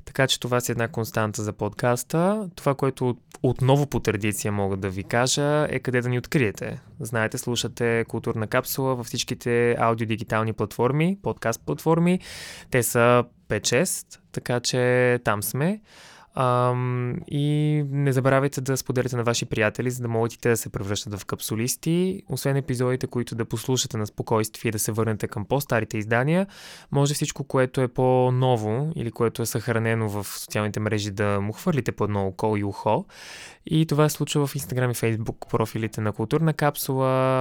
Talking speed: 165 wpm